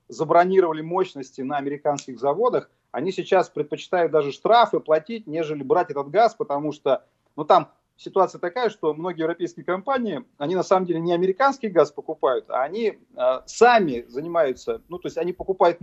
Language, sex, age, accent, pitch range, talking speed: Russian, male, 40-59, native, 170-270 Hz, 165 wpm